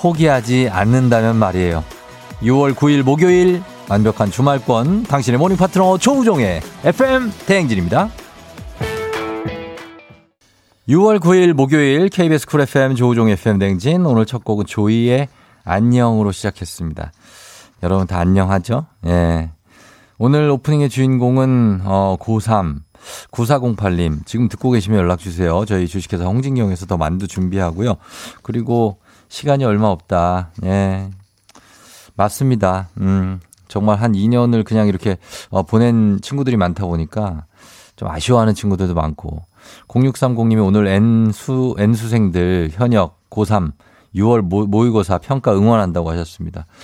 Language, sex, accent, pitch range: Korean, male, native, 95-125 Hz